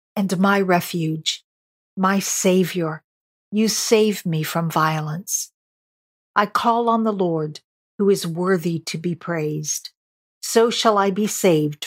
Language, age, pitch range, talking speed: English, 50-69, 165-215 Hz, 130 wpm